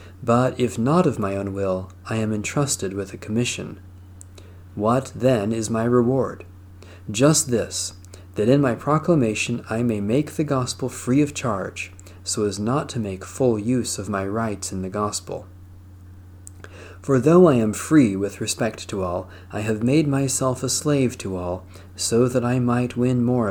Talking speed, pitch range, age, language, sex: 175 wpm, 95-125 Hz, 40-59, English, male